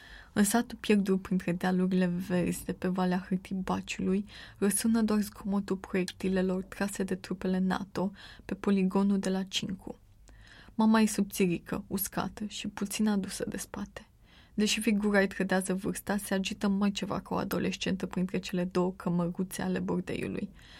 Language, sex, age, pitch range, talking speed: Romanian, female, 20-39, 185-215 Hz, 145 wpm